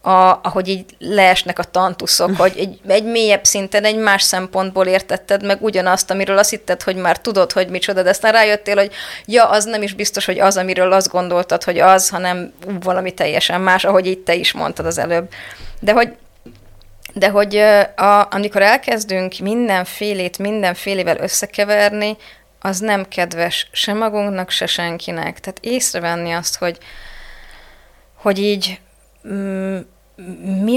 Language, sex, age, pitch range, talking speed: Hungarian, female, 20-39, 180-210 Hz, 150 wpm